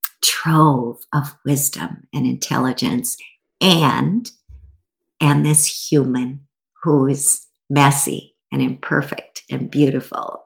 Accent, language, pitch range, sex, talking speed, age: American, English, 135-155 Hz, female, 90 wpm, 50-69